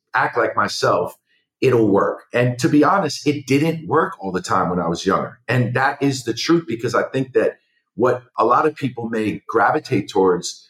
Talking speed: 200 wpm